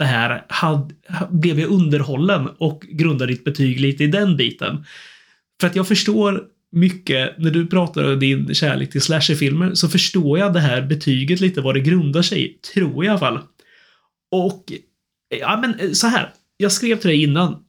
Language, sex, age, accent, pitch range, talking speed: Swedish, male, 30-49, native, 145-185 Hz, 185 wpm